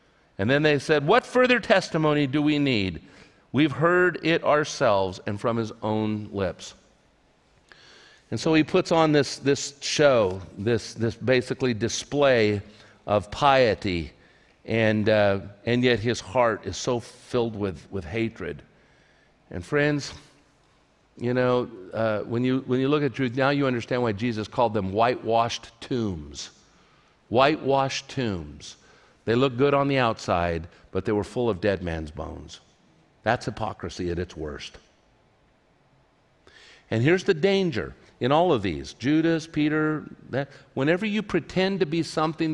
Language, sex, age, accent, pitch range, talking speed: English, male, 50-69, American, 105-140 Hz, 145 wpm